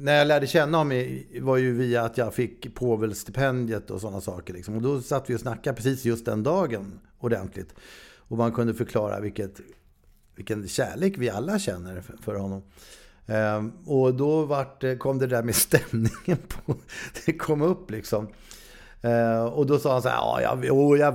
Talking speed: 170 wpm